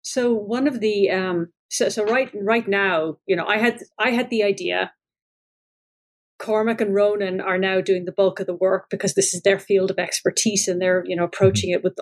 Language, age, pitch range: English, 40-59, 175-205 Hz